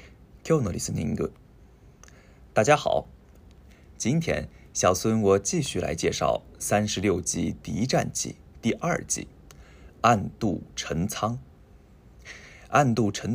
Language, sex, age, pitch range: Japanese, male, 20-39, 85-120 Hz